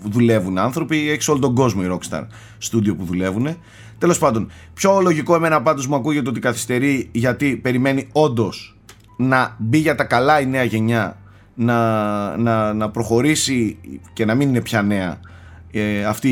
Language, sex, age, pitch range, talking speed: Greek, male, 30-49, 105-140 Hz, 160 wpm